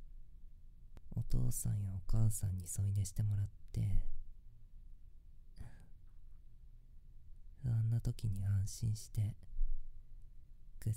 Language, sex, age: Japanese, female, 20-39